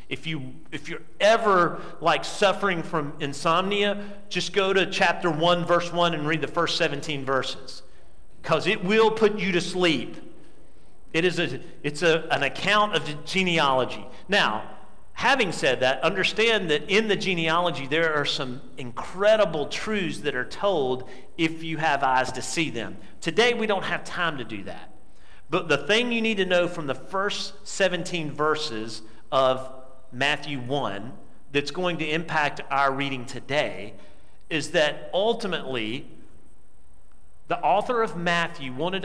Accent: American